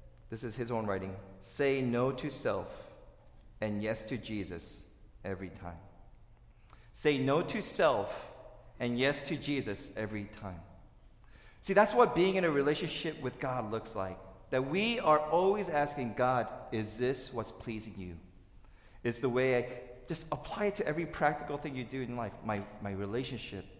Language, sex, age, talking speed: English, male, 40-59, 165 wpm